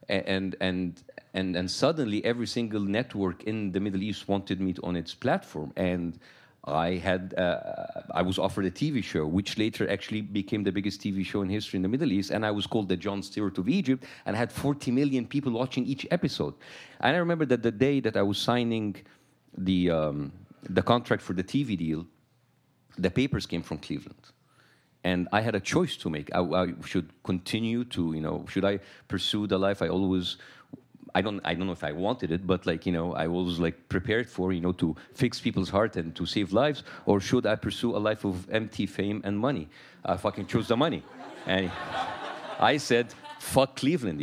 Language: English